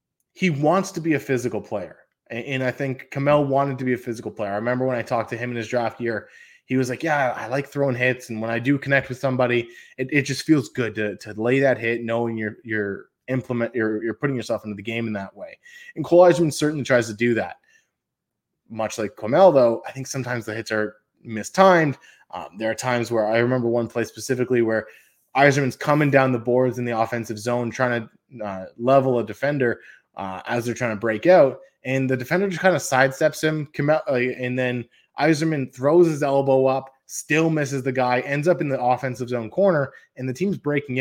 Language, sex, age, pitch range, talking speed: English, male, 20-39, 115-140 Hz, 220 wpm